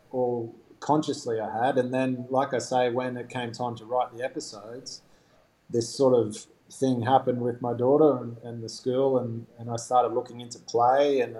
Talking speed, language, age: 195 wpm, English, 20-39